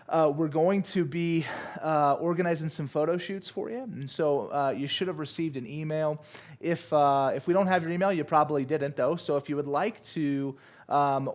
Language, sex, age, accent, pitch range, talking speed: English, male, 30-49, American, 140-165 Hz, 210 wpm